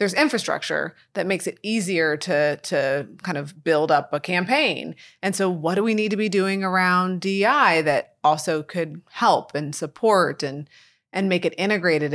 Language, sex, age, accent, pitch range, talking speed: English, female, 20-39, American, 160-225 Hz, 180 wpm